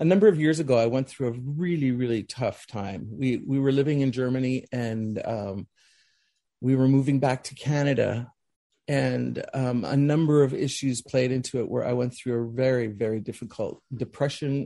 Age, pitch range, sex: 40-59, 120-140 Hz, male